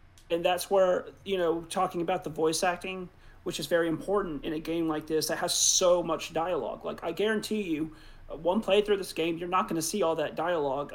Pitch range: 155-180 Hz